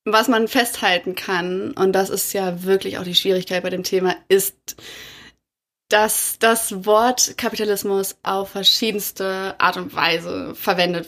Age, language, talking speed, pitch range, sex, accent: 20-39, German, 140 wpm, 190-225 Hz, female, German